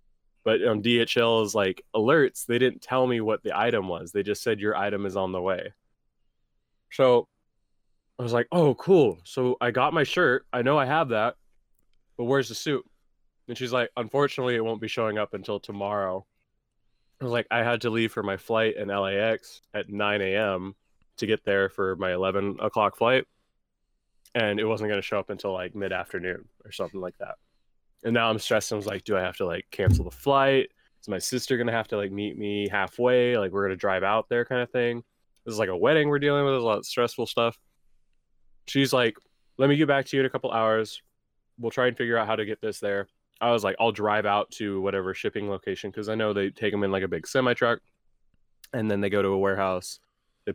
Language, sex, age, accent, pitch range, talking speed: English, male, 20-39, American, 100-120 Hz, 230 wpm